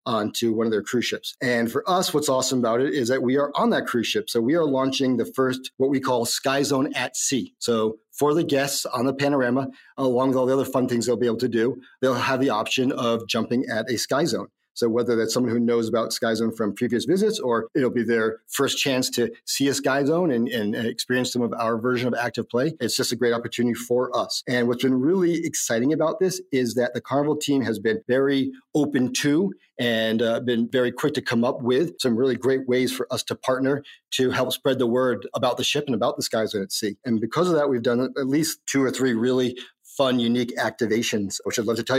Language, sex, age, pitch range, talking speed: English, male, 40-59, 115-135 Hz, 245 wpm